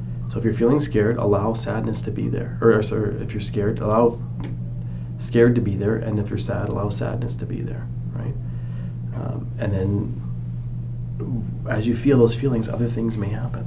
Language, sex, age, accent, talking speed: English, male, 30-49, American, 180 wpm